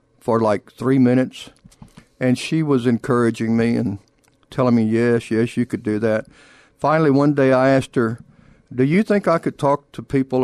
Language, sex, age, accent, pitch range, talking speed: English, male, 60-79, American, 120-150 Hz, 185 wpm